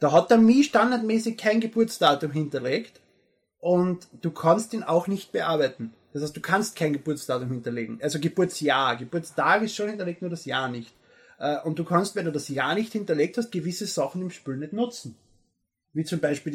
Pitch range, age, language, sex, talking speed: 150-195 Hz, 20-39, German, male, 185 wpm